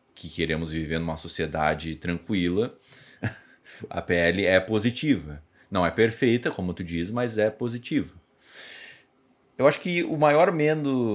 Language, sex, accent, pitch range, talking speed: Portuguese, male, Brazilian, 85-125 Hz, 135 wpm